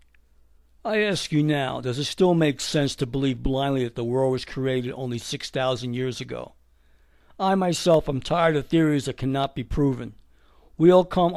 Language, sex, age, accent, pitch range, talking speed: English, male, 60-79, American, 120-165 Hz, 180 wpm